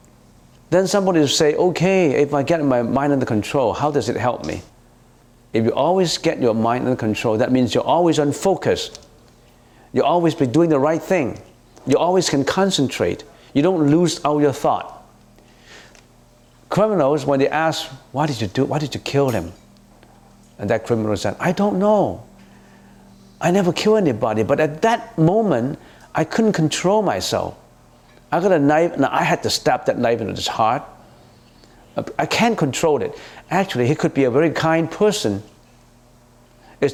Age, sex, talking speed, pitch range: 50-69, male, 170 wpm, 120-170 Hz